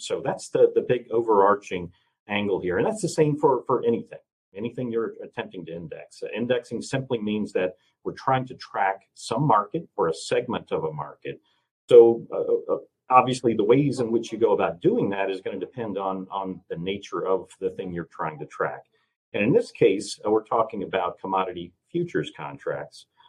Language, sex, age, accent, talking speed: English, male, 40-59, American, 195 wpm